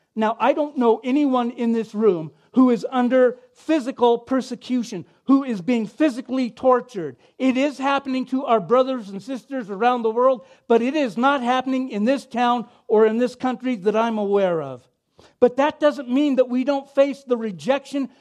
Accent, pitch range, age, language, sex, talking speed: American, 215-270 Hz, 50-69, English, male, 180 wpm